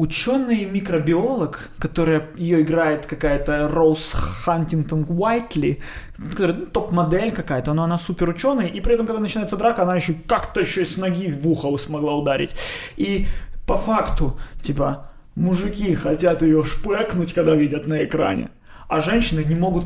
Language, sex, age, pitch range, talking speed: Ukrainian, male, 20-39, 145-180 Hz, 140 wpm